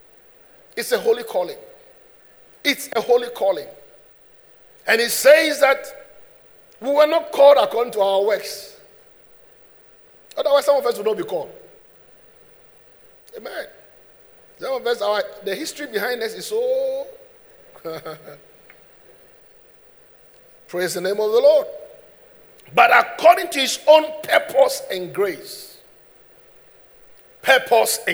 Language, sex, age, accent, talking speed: English, male, 50-69, Nigerian, 115 wpm